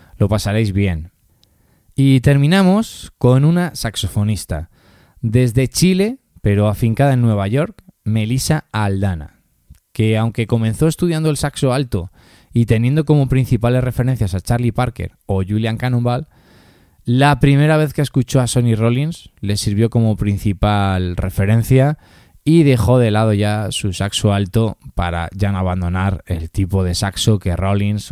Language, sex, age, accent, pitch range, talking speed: Spanish, male, 20-39, Spanish, 100-135 Hz, 140 wpm